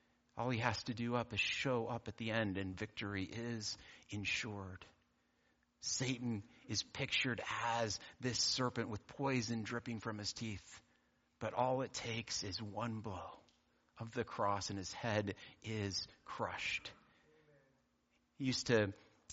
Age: 30-49